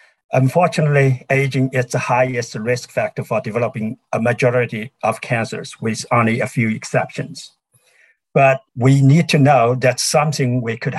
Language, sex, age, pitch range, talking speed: English, male, 50-69, 115-135 Hz, 145 wpm